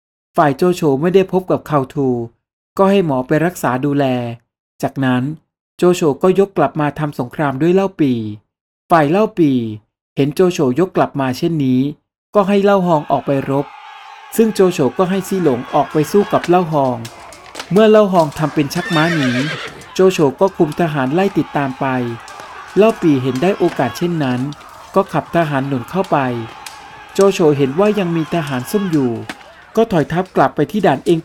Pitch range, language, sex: 135-185 Hz, Thai, male